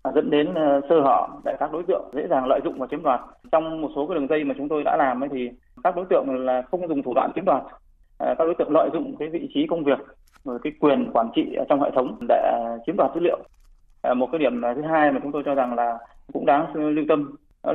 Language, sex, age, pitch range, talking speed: Vietnamese, male, 20-39, 125-160 Hz, 260 wpm